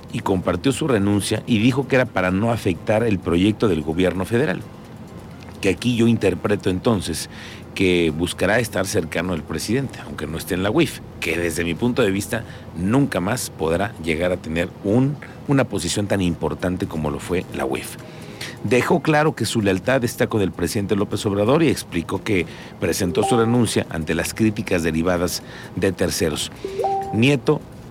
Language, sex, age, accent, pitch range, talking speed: Spanish, male, 50-69, Mexican, 90-130 Hz, 170 wpm